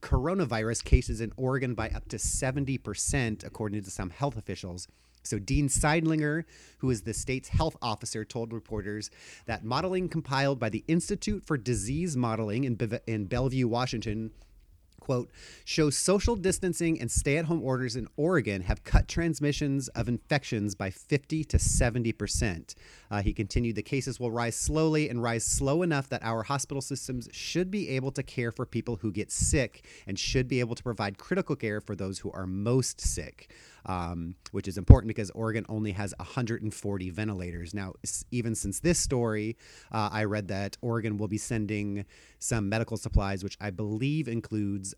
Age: 30-49